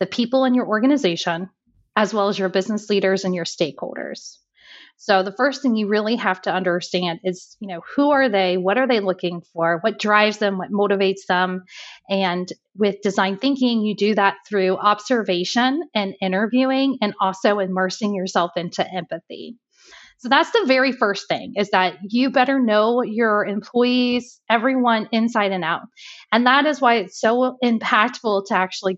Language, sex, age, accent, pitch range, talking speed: English, female, 30-49, American, 195-245 Hz, 170 wpm